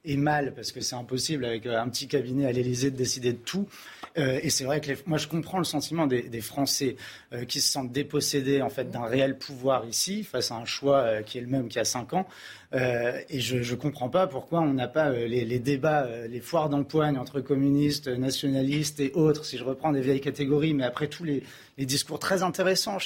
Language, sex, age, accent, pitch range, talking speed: French, male, 30-49, French, 130-160 Hz, 240 wpm